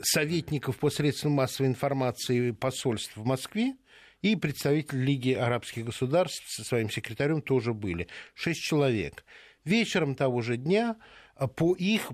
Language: Russian